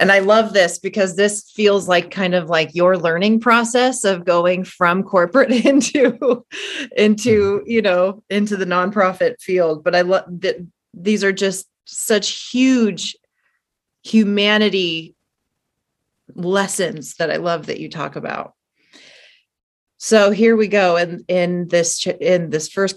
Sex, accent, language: female, American, English